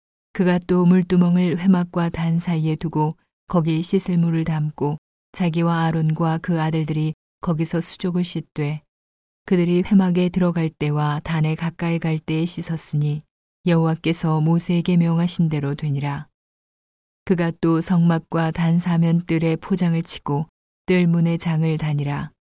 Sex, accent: female, native